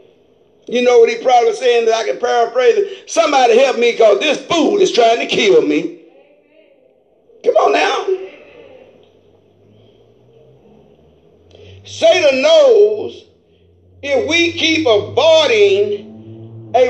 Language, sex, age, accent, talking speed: English, male, 50-69, American, 115 wpm